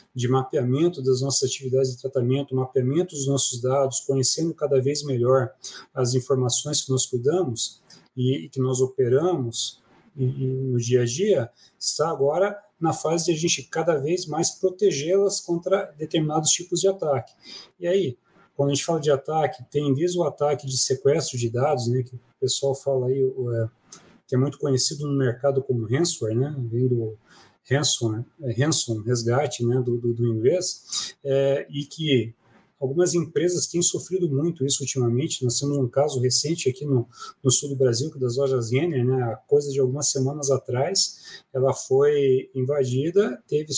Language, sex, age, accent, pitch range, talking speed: Portuguese, male, 40-59, Brazilian, 130-170 Hz, 170 wpm